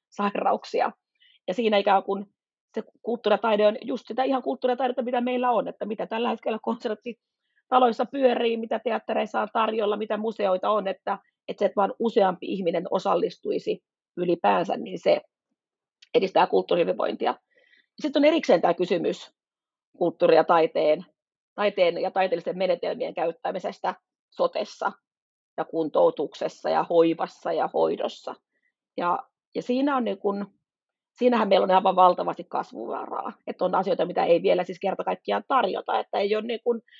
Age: 30-49